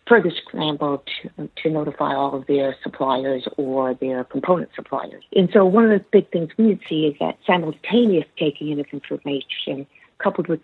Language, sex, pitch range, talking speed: English, female, 145-180 Hz, 175 wpm